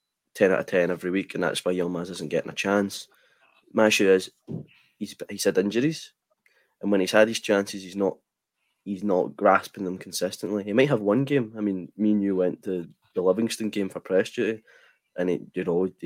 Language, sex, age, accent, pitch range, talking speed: English, male, 20-39, British, 90-105 Hz, 210 wpm